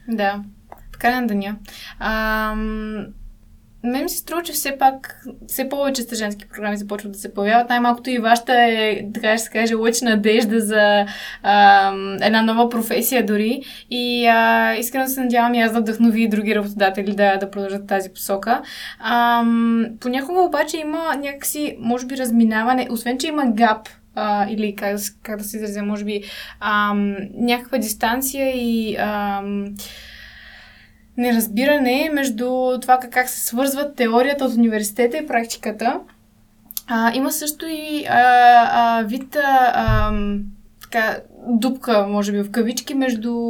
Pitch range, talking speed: 210-250 Hz, 145 wpm